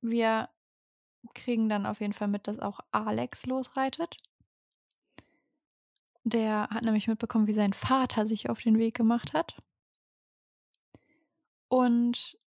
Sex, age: female, 20-39